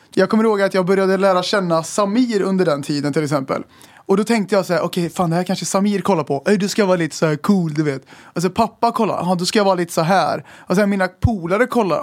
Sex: male